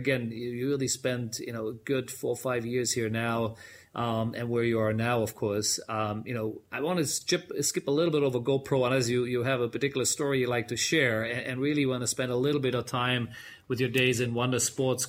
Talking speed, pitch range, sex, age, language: 260 wpm, 110-130 Hz, male, 30-49, English